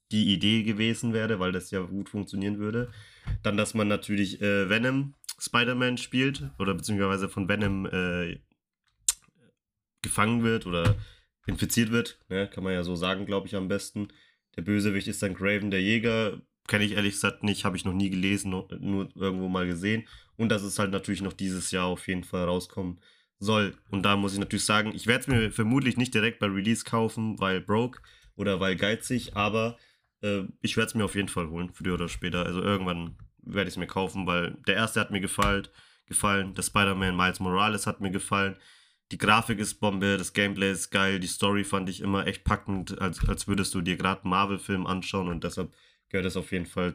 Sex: male